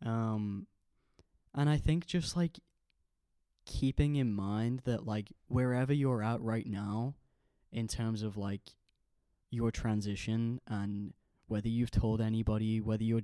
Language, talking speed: English, 130 wpm